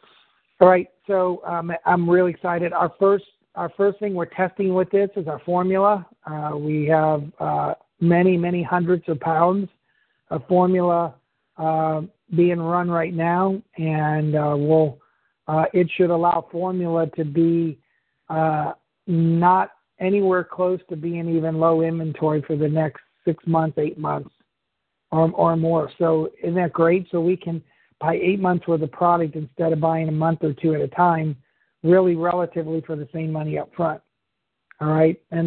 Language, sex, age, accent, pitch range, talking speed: English, male, 50-69, American, 160-180 Hz, 165 wpm